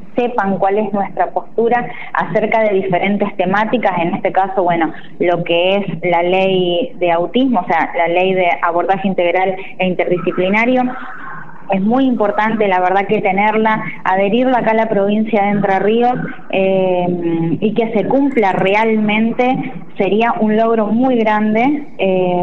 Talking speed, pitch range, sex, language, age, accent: 145 wpm, 180-225 Hz, female, Spanish, 20-39, Argentinian